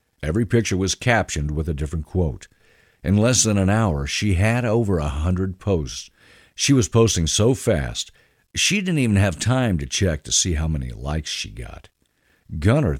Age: 50-69